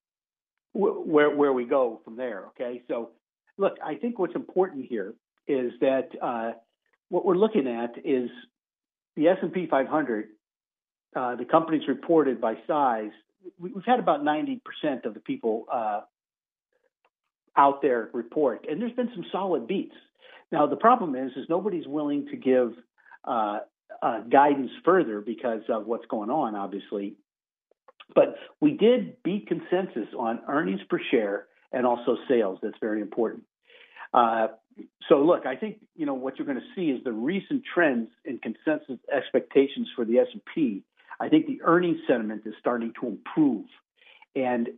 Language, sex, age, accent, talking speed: English, male, 50-69, American, 155 wpm